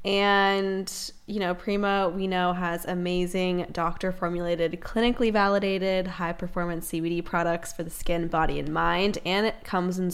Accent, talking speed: American, 140 wpm